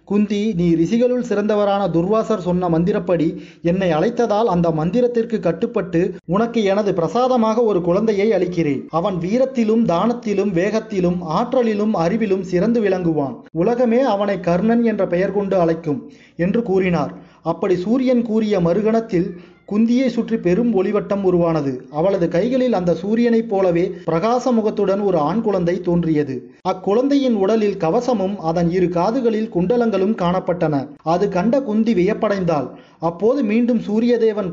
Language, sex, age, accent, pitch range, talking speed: Tamil, male, 30-49, native, 170-225 Hz, 120 wpm